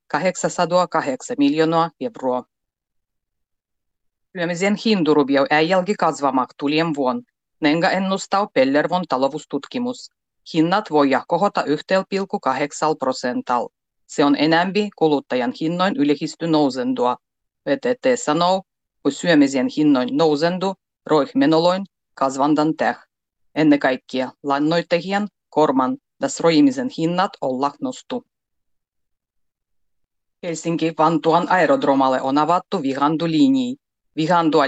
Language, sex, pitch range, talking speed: Finnish, female, 140-195 Hz, 85 wpm